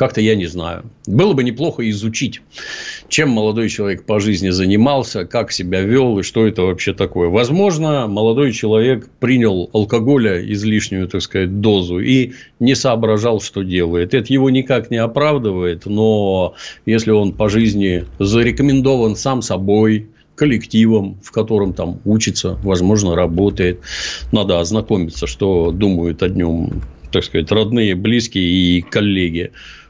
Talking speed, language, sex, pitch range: 135 wpm, Russian, male, 95-115 Hz